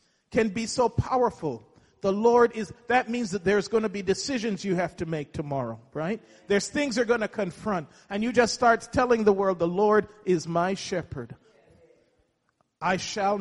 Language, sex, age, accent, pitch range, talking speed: English, male, 40-59, American, 170-215 Hz, 185 wpm